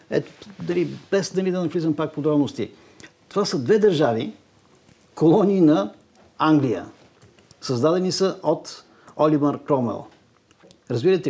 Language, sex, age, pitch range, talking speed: Bulgarian, male, 50-69, 130-170 Hz, 115 wpm